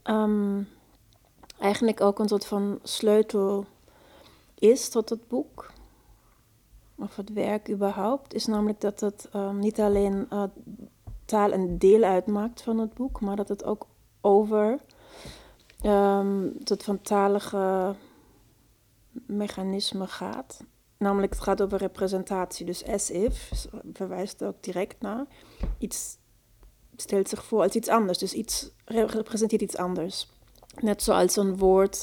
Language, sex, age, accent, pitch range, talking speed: Dutch, female, 30-49, Dutch, 190-215 Hz, 130 wpm